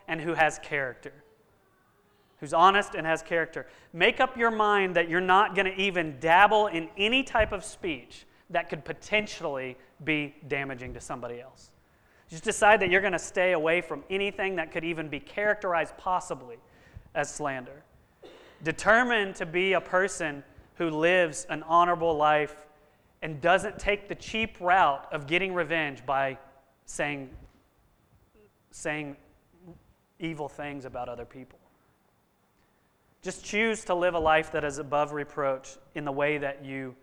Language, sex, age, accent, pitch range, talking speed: English, male, 30-49, American, 140-175 Hz, 150 wpm